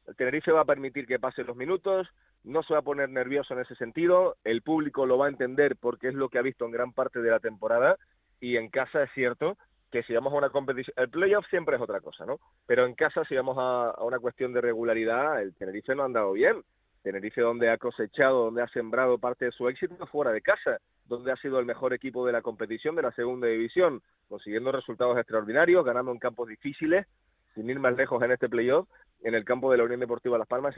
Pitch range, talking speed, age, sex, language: 120-160 Hz, 235 wpm, 30-49, male, Spanish